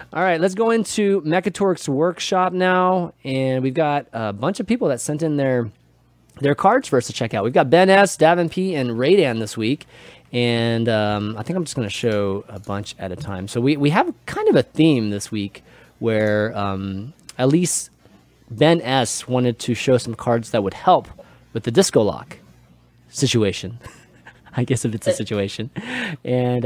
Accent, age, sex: American, 30-49, male